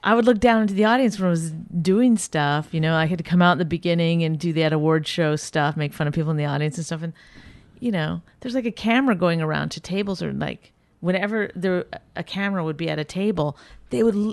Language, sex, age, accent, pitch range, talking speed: English, female, 30-49, American, 155-205 Hz, 255 wpm